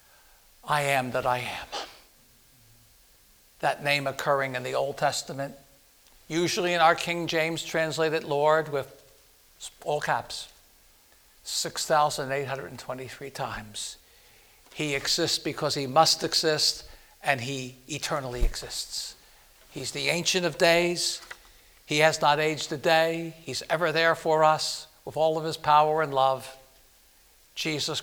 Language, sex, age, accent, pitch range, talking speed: English, male, 60-79, American, 135-170 Hz, 125 wpm